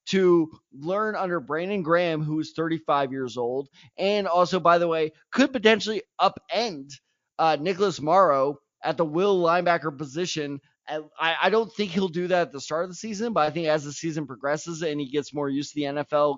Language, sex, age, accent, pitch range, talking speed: English, male, 20-39, American, 145-180 Hz, 200 wpm